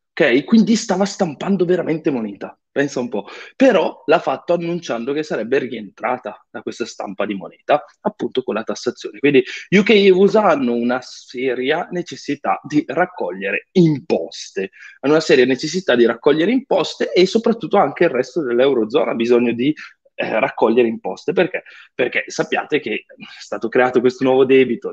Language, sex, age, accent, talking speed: Italian, male, 20-39, native, 155 wpm